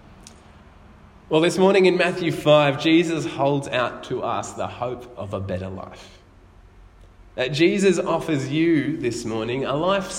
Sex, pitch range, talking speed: male, 100-160 Hz, 145 wpm